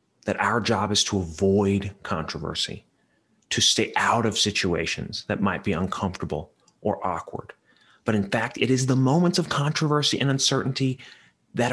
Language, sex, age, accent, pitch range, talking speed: English, male, 30-49, American, 100-135 Hz, 155 wpm